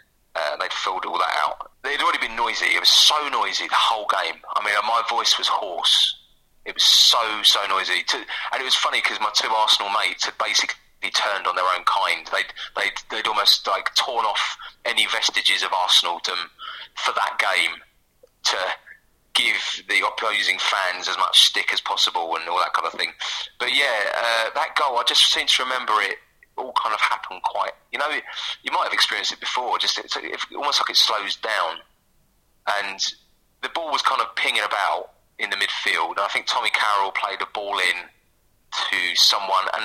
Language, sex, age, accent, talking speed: English, male, 30-49, British, 195 wpm